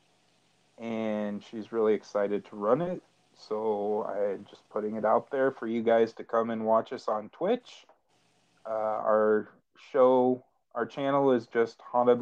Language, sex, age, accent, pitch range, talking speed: English, male, 30-49, American, 105-120 Hz, 155 wpm